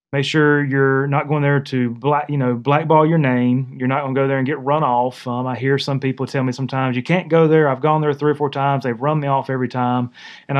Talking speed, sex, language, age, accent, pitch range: 275 wpm, male, English, 30-49, American, 125-150 Hz